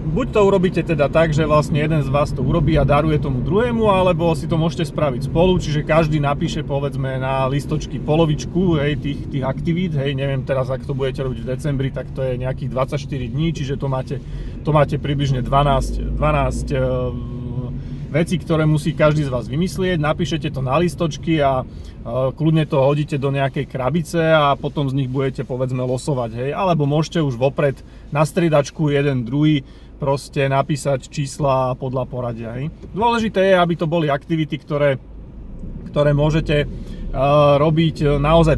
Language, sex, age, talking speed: Slovak, male, 40-59, 170 wpm